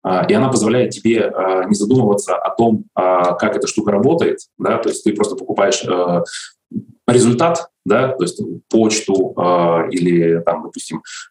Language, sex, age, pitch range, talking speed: Russian, male, 20-39, 90-140 Hz, 165 wpm